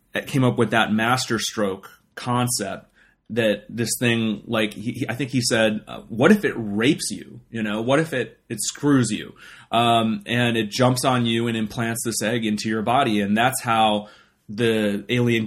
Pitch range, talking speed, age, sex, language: 105-120 Hz, 195 wpm, 30-49, male, English